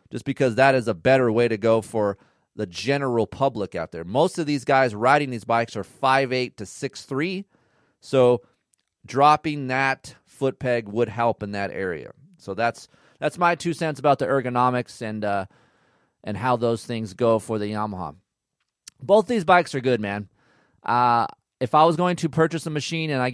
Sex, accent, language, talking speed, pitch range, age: male, American, English, 185 wpm, 110-140 Hz, 30-49